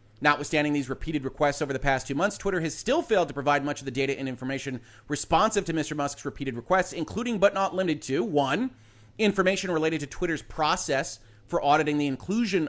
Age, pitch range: 30-49, 130-175 Hz